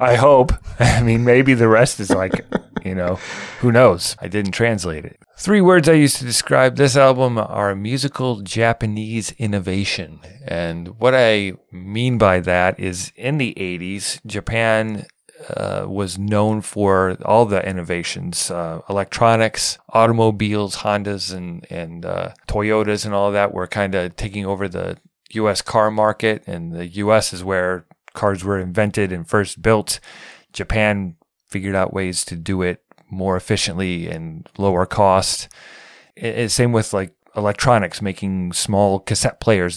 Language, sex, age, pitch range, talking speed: English, male, 30-49, 95-110 Hz, 150 wpm